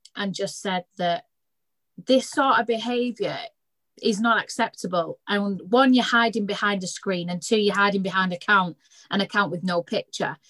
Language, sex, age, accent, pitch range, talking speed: English, female, 30-49, British, 180-220 Hz, 160 wpm